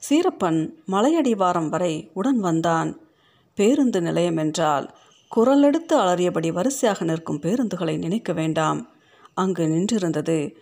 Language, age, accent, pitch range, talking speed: Tamil, 50-69, native, 170-255 Hz, 95 wpm